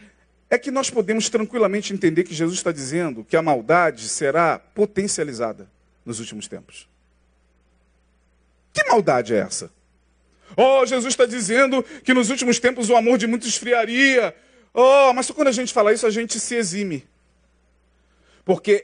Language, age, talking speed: Portuguese, 40-59, 155 wpm